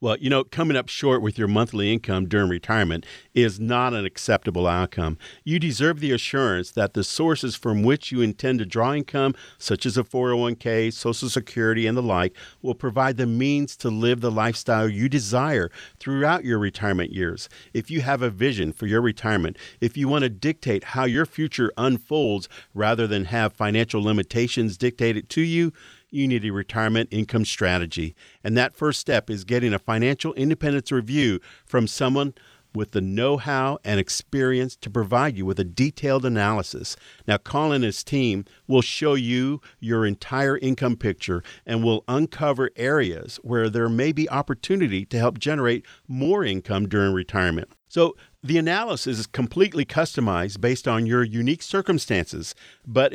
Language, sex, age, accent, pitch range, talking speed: English, male, 50-69, American, 110-140 Hz, 165 wpm